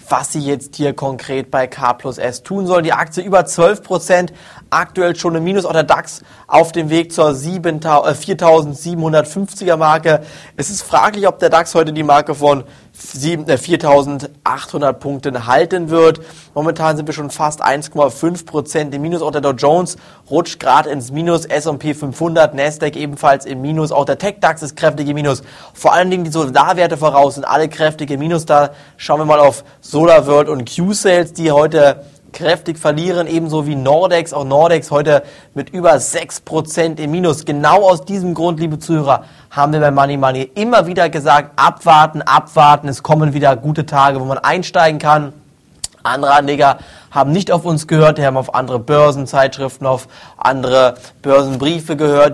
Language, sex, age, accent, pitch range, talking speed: German, male, 20-39, German, 140-165 Hz, 165 wpm